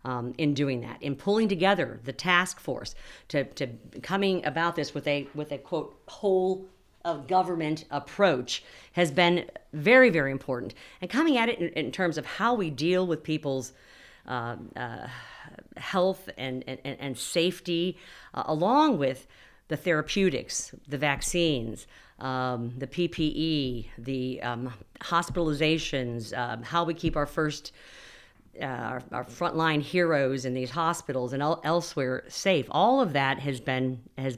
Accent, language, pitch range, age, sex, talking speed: American, English, 135-180 Hz, 50-69, female, 150 wpm